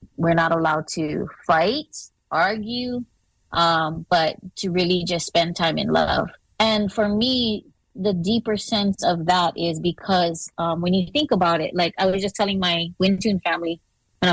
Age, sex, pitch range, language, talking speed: 20-39, female, 165-195 Hz, English, 170 wpm